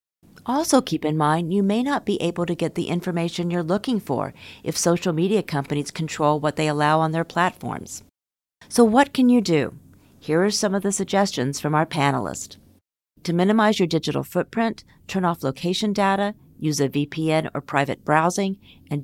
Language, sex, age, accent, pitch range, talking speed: English, female, 50-69, American, 145-195 Hz, 180 wpm